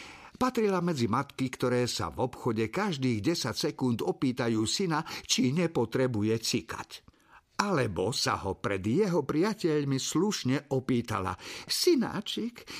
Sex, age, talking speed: male, 50-69, 115 wpm